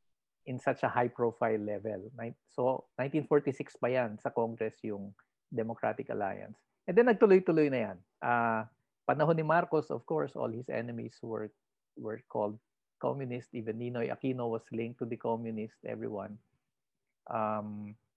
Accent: Filipino